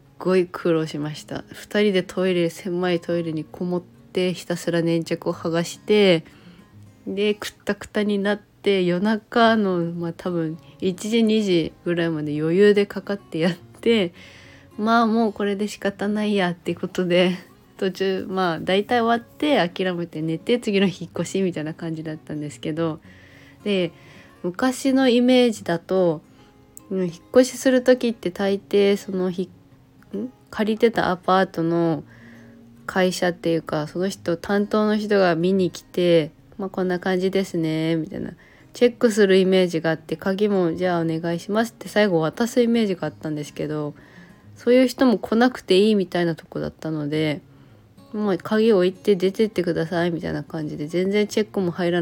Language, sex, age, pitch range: Japanese, female, 20-39, 165-205 Hz